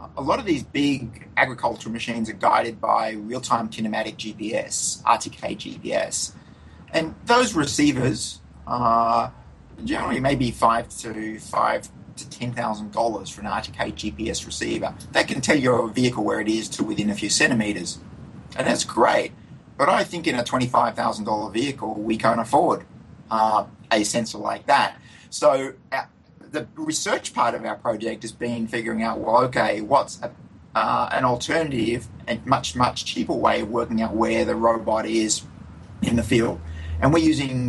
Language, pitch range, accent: English, 110-120 Hz, Australian